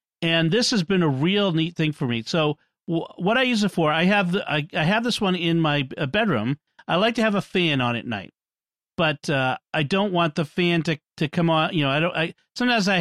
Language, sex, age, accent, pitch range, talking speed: English, male, 40-59, American, 140-190 Hz, 260 wpm